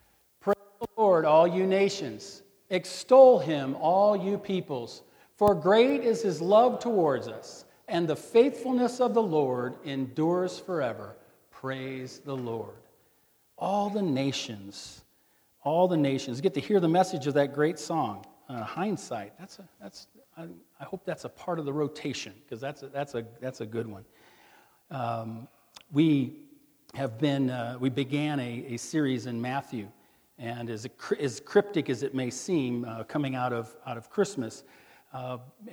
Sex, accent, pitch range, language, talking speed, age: male, American, 130-180 Hz, English, 155 wpm, 40-59